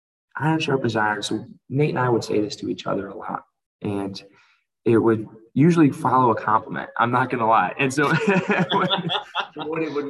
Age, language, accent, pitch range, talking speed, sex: 20-39, English, American, 100-130 Hz, 195 wpm, male